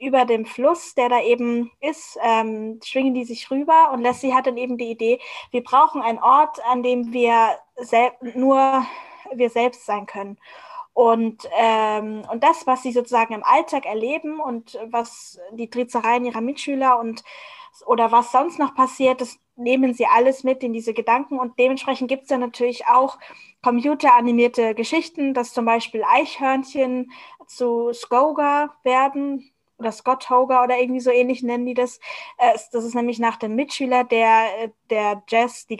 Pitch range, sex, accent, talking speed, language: 235-275 Hz, female, German, 165 wpm, German